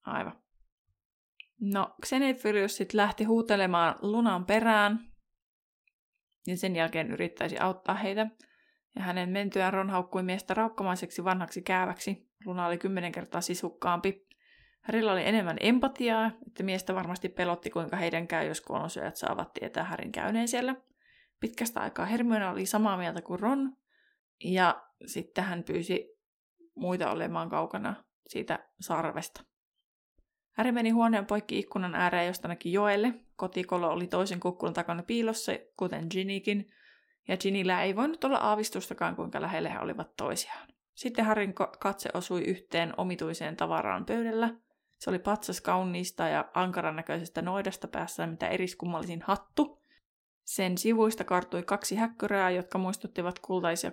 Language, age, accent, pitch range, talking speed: Finnish, 20-39, native, 180-220 Hz, 130 wpm